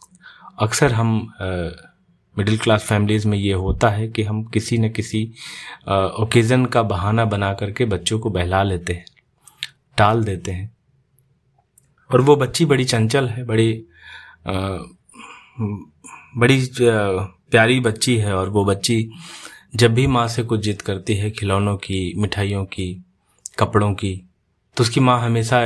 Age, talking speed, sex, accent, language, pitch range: 30-49, 145 wpm, male, native, Hindi, 100-120 Hz